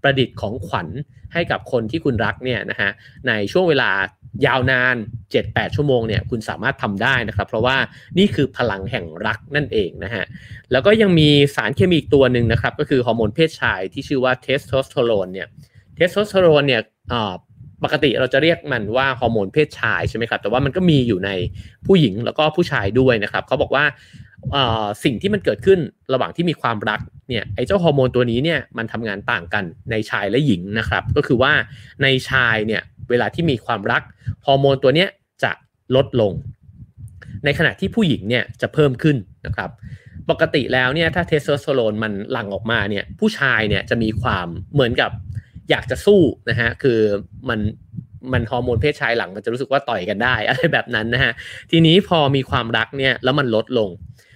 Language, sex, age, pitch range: English, male, 30-49, 110-140 Hz